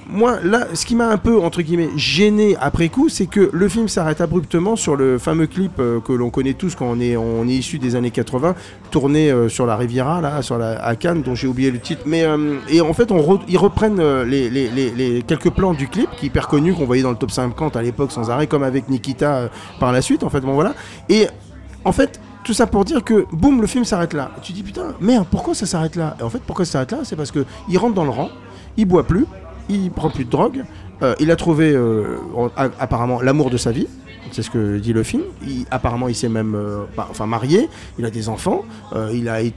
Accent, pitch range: French, 125-195 Hz